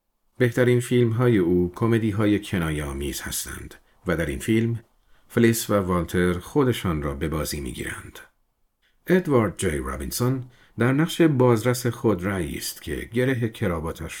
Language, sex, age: Persian, male, 50-69